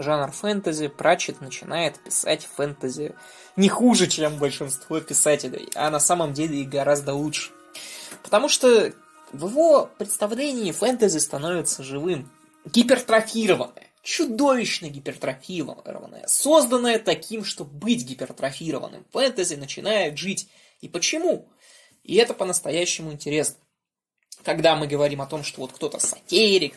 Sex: male